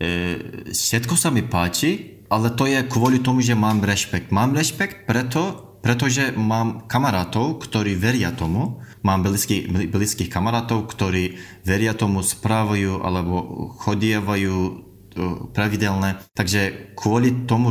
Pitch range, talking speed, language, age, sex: 90-110 Hz, 120 wpm, Slovak, 20-39, male